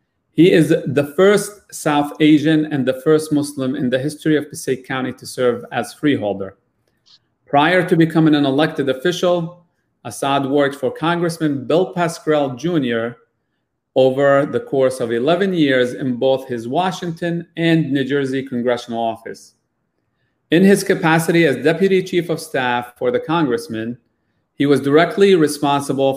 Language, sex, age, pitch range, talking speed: English, male, 40-59, 125-160 Hz, 145 wpm